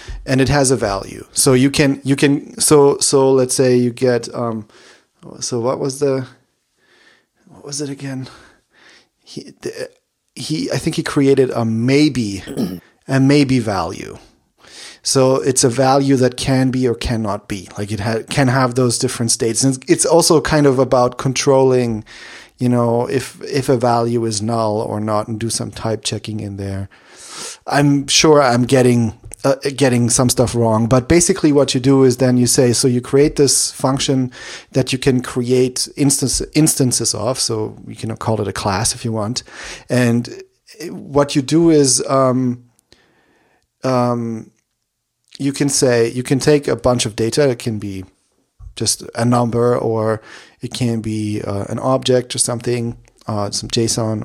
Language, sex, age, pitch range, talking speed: English, male, 30-49, 115-135 Hz, 175 wpm